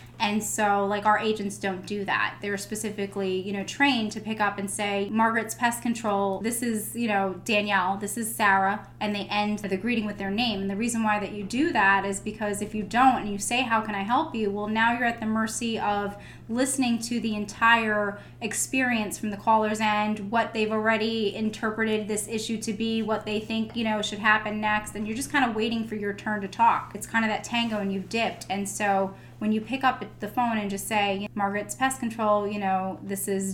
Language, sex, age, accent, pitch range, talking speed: English, female, 10-29, American, 200-230 Hz, 225 wpm